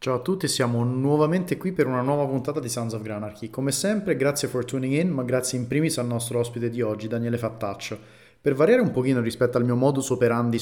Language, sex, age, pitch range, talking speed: Italian, male, 30-49, 115-135 Hz, 225 wpm